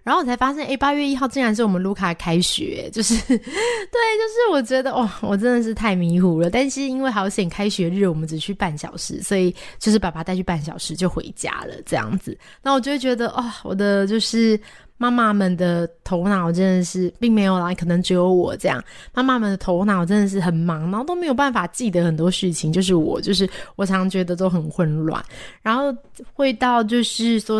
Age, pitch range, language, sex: 20-39, 180-240 Hz, Chinese, female